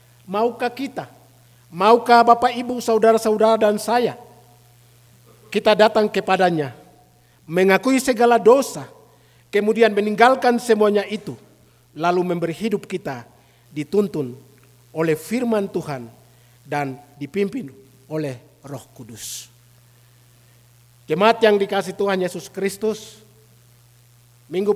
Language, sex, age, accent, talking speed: Indonesian, male, 50-69, native, 90 wpm